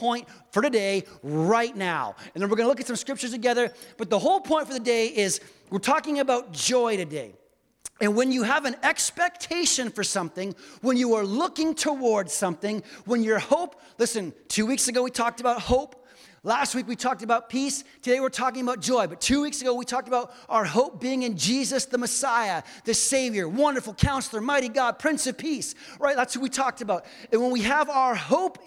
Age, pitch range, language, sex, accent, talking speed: 30-49, 230-275 Hz, English, male, American, 205 wpm